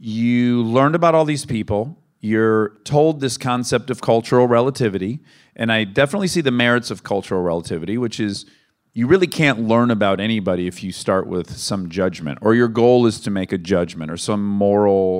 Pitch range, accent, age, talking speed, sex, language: 105-155 Hz, American, 40-59, 185 wpm, male, English